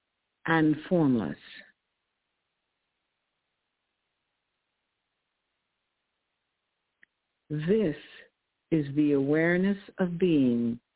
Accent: American